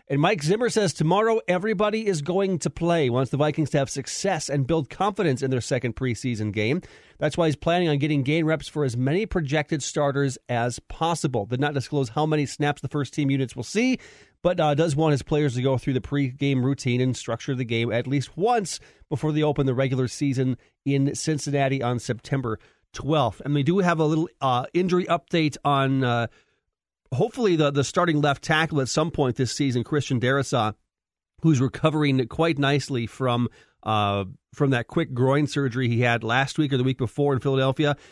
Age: 40-59